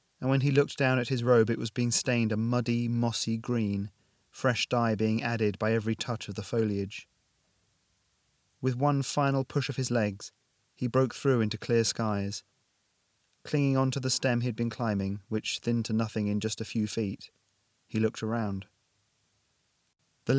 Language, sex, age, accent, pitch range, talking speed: English, male, 30-49, British, 105-125 Hz, 175 wpm